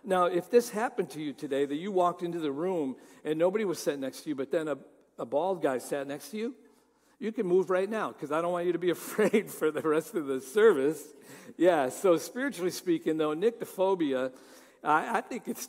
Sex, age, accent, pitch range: male, 60-79, American, 150-185 Hz